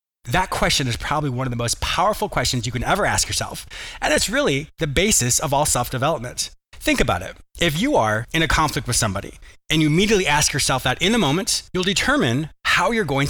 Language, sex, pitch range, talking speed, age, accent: English, male, 120-160 Hz, 215 wpm, 30-49, American